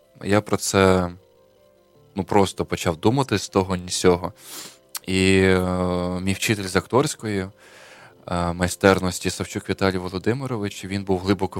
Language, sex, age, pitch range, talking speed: Ukrainian, male, 20-39, 90-100 Hz, 125 wpm